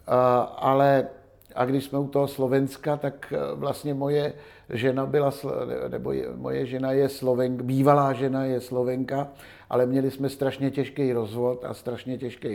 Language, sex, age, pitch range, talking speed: Slovak, male, 50-69, 125-140 Hz, 145 wpm